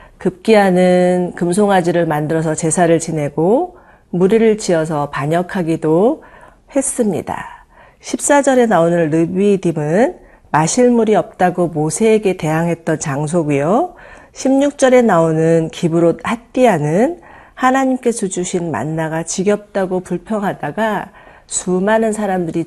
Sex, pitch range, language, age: female, 165-225 Hz, Korean, 40-59